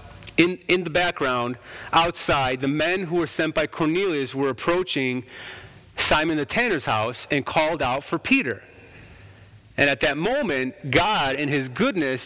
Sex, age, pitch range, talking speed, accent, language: male, 30-49, 115-165 Hz, 150 wpm, American, English